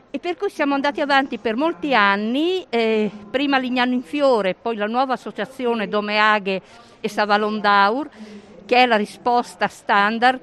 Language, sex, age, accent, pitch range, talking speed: Italian, female, 50-69, native, 205-265 Hz, 155 wpm